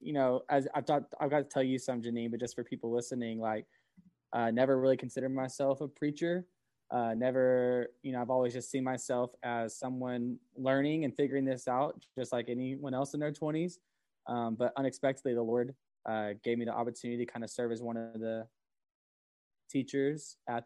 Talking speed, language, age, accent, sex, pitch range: 200 wpm, English, 20-39, American, male, 120-135 Hz